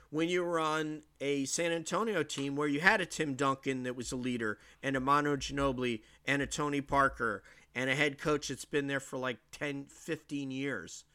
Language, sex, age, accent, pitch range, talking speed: English, male, 40-59, American, 130-160 Hz, 205 wpm